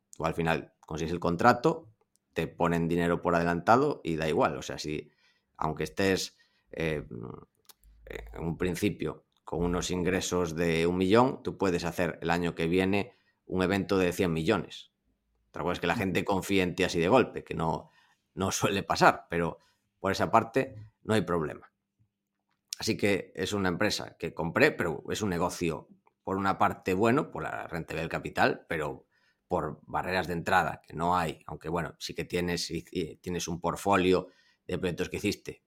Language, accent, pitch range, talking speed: Spanish, Spanish, 85-100 Hz, 180 wpm